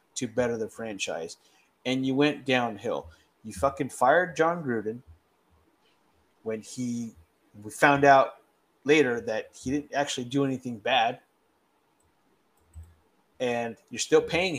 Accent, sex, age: American, male, 30-49